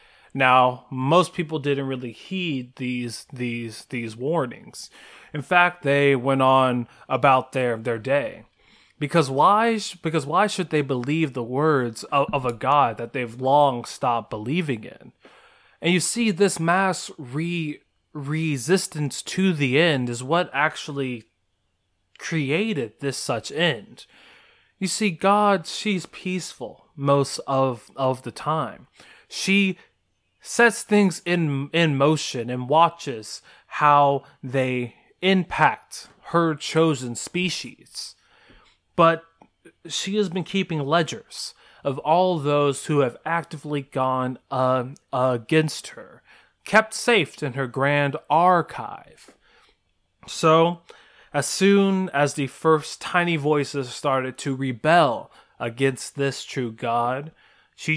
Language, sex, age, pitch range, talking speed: English, male, 20-39, 130-170 Hz, 120 wpm